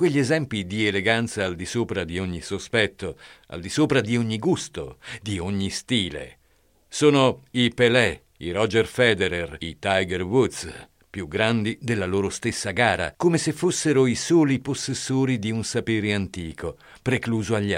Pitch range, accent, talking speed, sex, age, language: 90-125 Hz, native, 155 wpm, male, 50-69, Italian